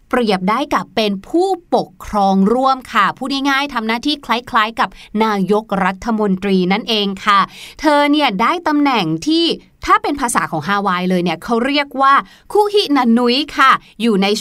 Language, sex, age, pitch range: Thai, female, 30-49, 210-305 Hz